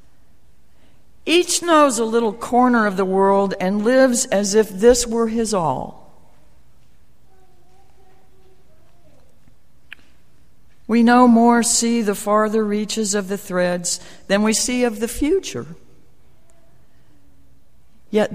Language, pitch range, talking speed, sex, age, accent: English, 170-235 Hz, 110 wpm, female, 60-79, American